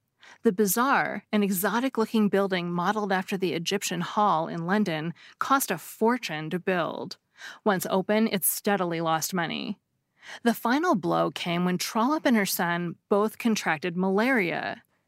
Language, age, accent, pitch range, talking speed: English, 30-49, American, 180-235 Hz, 130 wpm